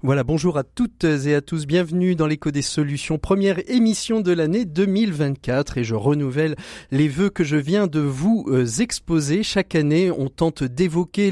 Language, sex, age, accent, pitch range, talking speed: French, male, 30-49, French, 140-185 Hz, 175 wpm